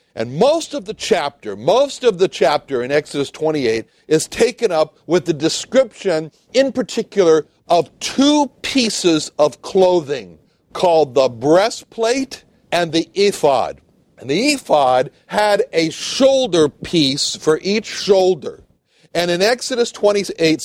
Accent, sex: American, male